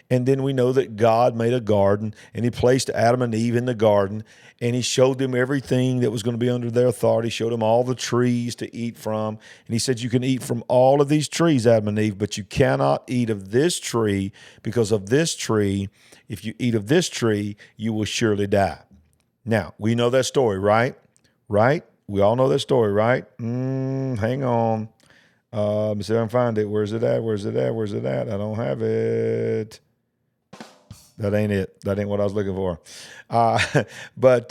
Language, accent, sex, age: English, American, male, 50-69